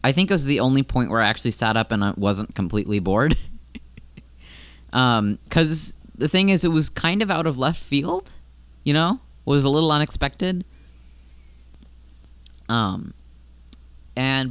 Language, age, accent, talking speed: English, 20-39, American, 160 wpm